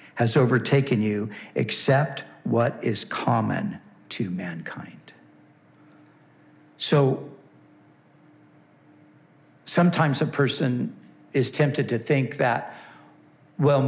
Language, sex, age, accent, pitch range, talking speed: English, male, 60-79, American, 120-150 Hz, 80 wpm